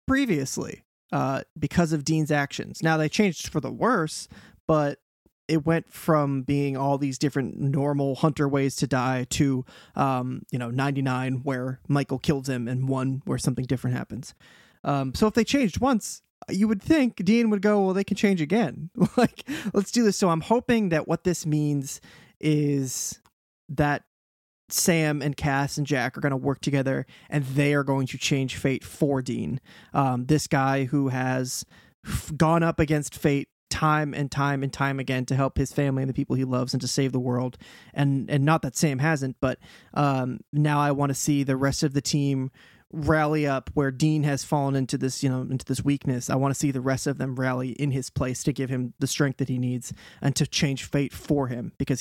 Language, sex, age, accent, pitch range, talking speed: English, male, 20-39, American, 130-155 Hz, 205 wpm